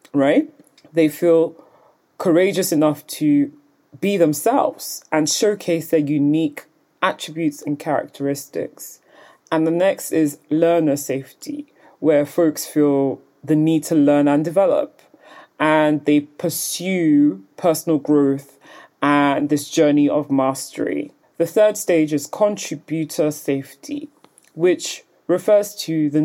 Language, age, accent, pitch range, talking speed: English, 30-49, British, 145-175 Hz, 115 wpm